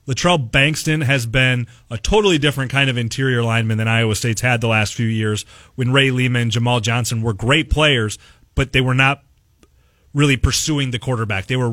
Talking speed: 195 wpm